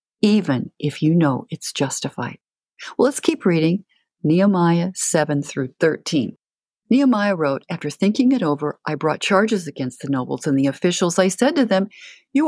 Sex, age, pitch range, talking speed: female, 50-69, 160-230 Hz, 165 wpm